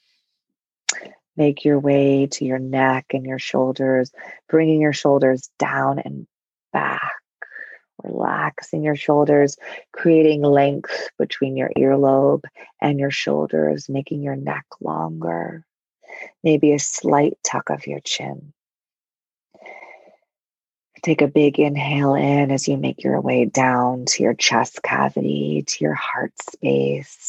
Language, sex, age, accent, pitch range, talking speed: English, female, 30-49, American, 125-145 Hz, 125 wpm